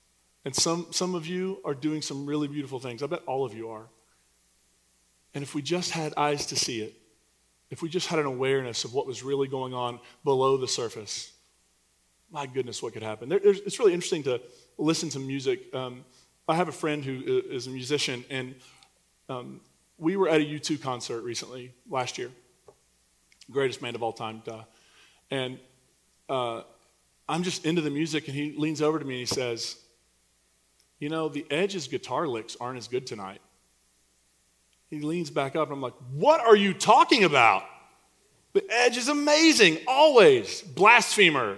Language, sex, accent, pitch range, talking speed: English, male, American, 115-165 Hz, 180 wpm